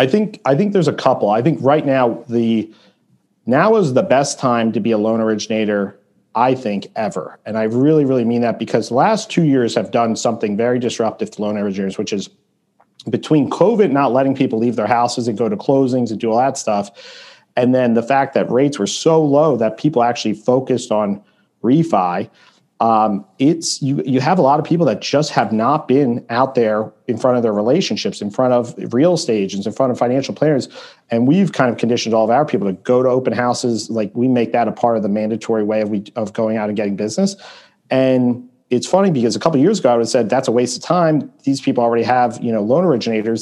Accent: American